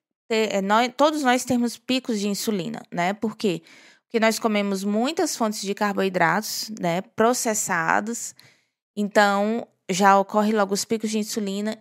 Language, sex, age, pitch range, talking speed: Portuguese, female, 20-39, 195-240 Hz, 125 wpm